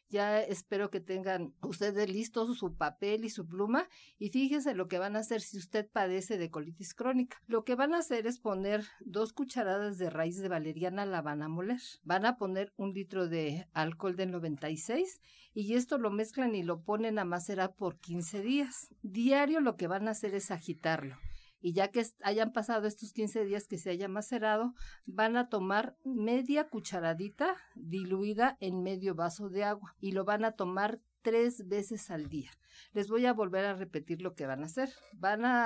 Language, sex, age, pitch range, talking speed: Spanish, female, 50-69, 180-225 Hz, 195 wpm